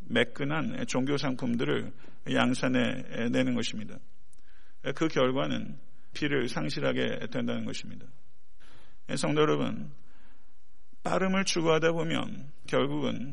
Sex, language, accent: male, Korean, native